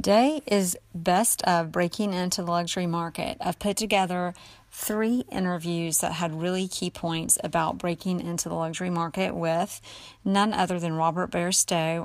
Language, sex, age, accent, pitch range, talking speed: English, female, 40-59, American, 160-185 Hz, 155 wpm